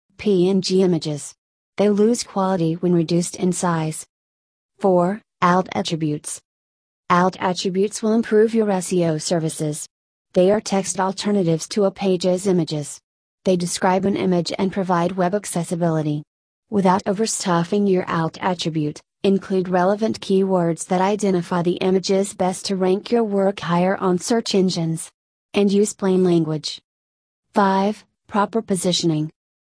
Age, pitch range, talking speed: 30-49, 170-195 Hz, 125 wpm